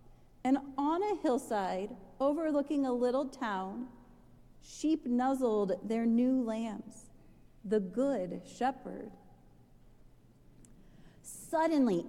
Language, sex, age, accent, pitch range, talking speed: English, female, 40-59, American, 240-300 Hz, 85 wpm